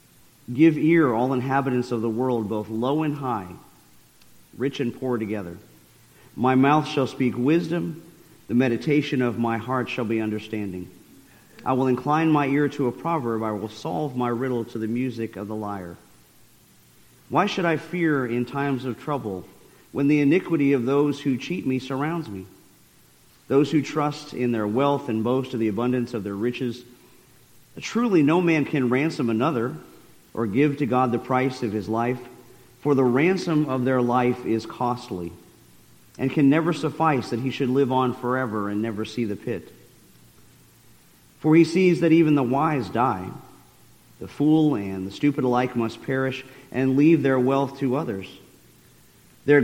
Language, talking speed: English, 170 wpm